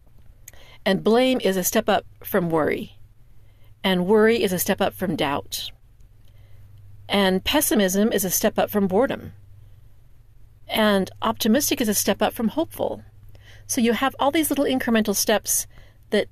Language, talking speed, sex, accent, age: English, 150 wpm, female, American, 40-59